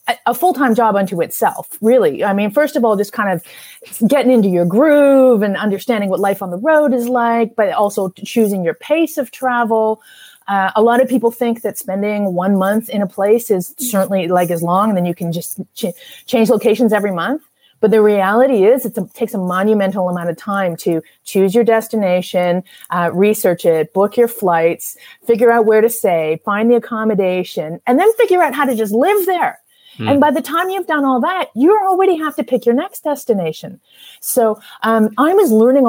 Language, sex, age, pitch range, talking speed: English, female, 30-49, 190-255 Hz, 200 wpm